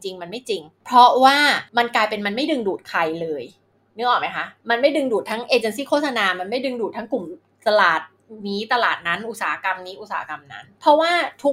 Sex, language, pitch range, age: female, Thai, 200-270 Hz, 20-39